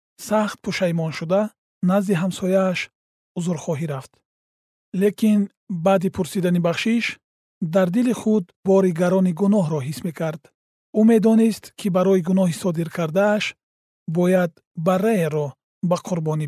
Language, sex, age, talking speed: Persian, male, 40-59, 125 wpm